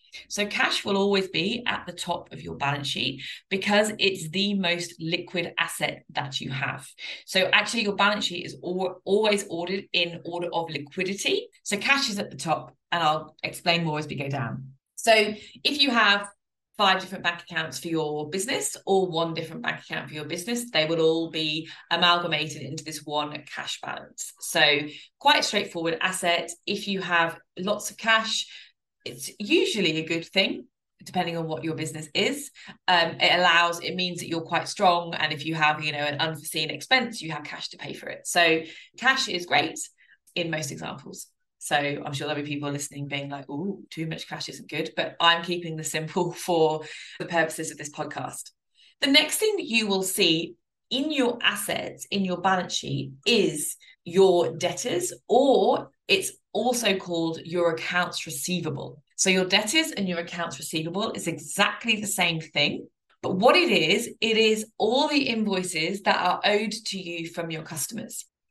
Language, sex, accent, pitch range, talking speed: English, female, British, 160-205 Hz, 180 wpm